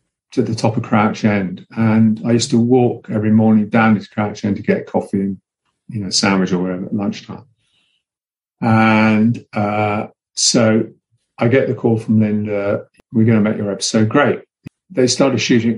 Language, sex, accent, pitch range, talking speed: English, male, British, 105-120 Hz, 180 wpm